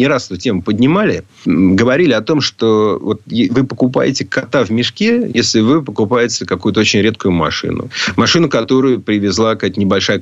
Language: Russian